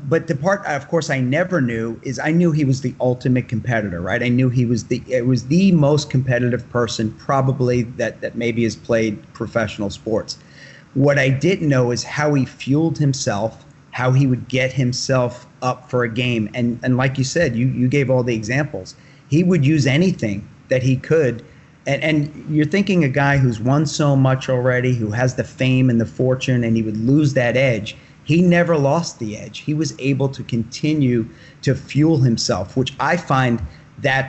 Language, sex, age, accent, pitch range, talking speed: English, male, 40-59, American, 120-140 Hz, 200 wpm